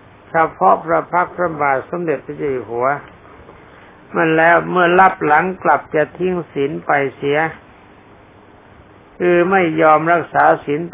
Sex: male